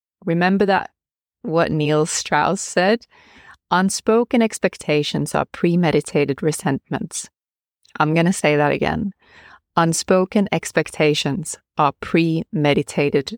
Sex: female